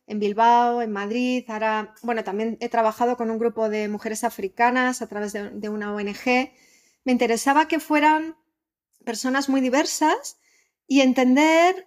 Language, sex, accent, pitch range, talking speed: Spanish, female, Spanish, 225-275 Hz, 150 wpm